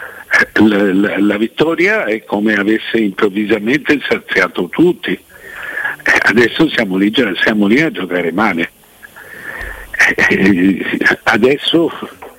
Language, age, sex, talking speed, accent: Italian, 60-79, male, 80 wpm, native